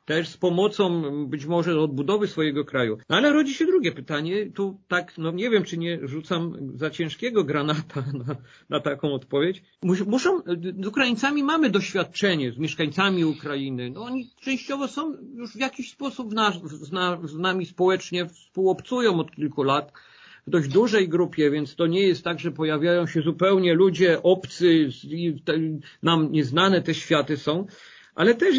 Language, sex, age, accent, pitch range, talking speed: Polish, male, 50-69, native, 150-195 Hz, 165 wpm